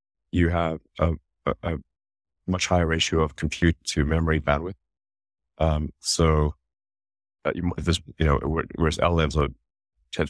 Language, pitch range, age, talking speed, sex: English, 75-90 Hz, 30-49, 145 wpm, male